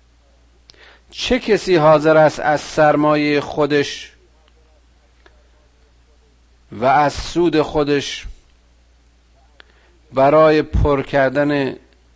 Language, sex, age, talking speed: Persian, male, 50-69, 70 wpm